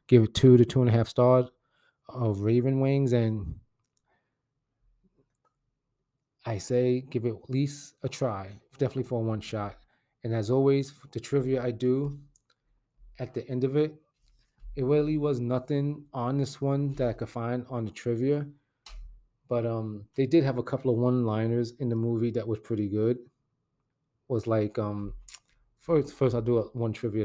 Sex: male